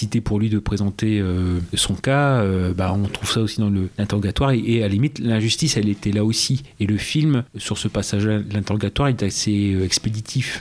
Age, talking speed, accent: 30-49, 215 wpm, French